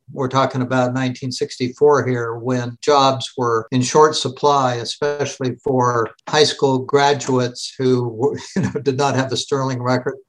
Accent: American